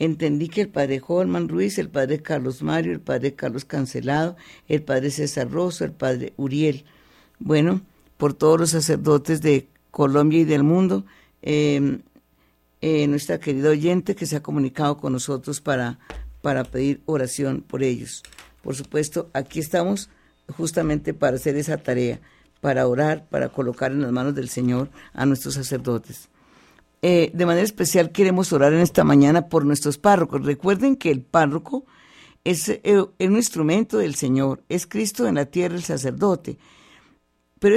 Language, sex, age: Spanish, female, 50-69